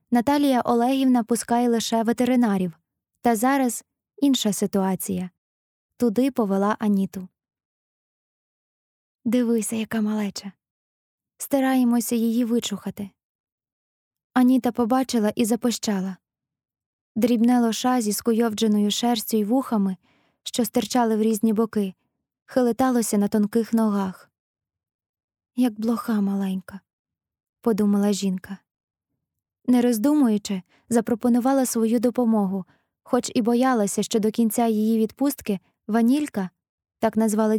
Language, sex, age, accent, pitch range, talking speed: Ukrainian, female, 20-39, native, 205-245 Hz, 95 wpm